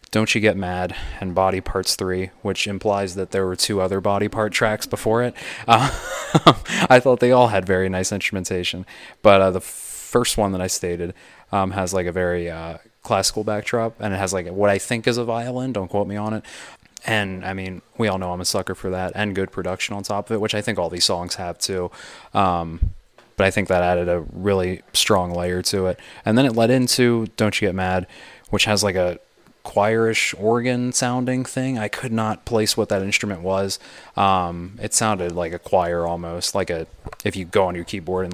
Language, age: English, 20-39